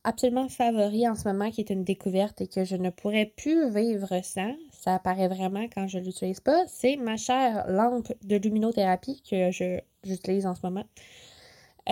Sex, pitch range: female, 190-230 Hz